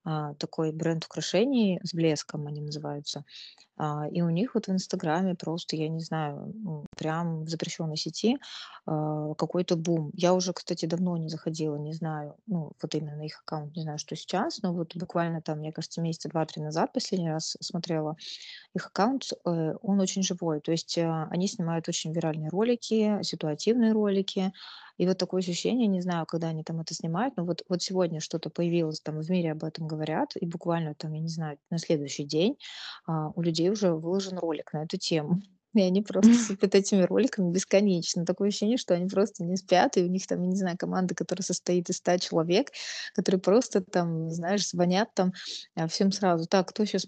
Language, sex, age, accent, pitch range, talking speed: Russian, female, 20-39, native, 160-190 Hz, 185 wpm